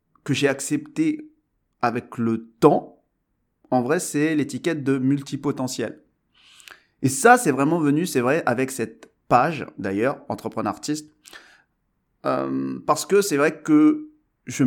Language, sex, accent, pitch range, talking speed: French, male, French, 125-160 Hz, 130 wpm